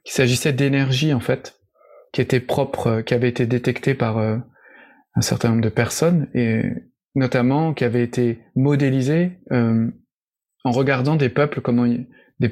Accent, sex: French, male